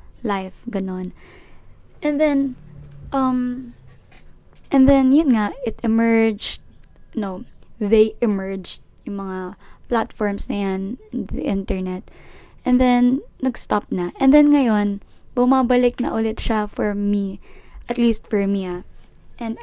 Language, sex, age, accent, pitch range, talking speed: Filipino, female, 20-39, native, 200-250 Hz, 120 wpm